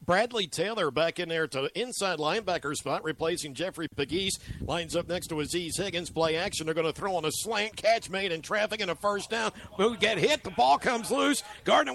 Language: English